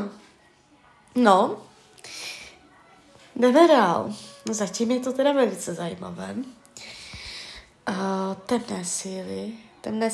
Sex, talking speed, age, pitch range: female, 75 wpm, 20-39, 205-255 Hz